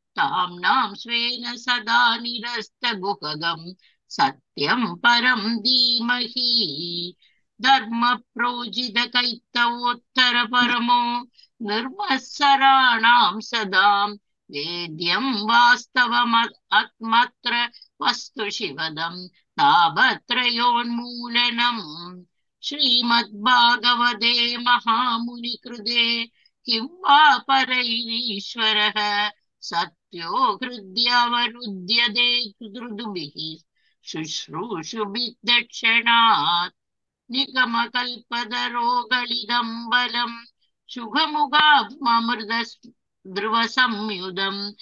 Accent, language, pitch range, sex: native, Tamil, 210-245 Hz, female